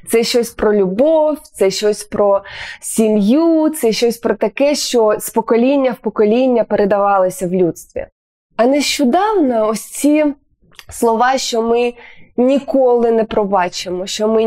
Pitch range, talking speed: 215-275 Hz, 135 wpm